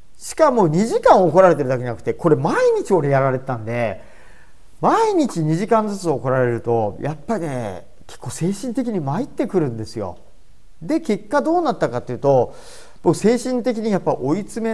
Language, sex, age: Japanese, male, 40-59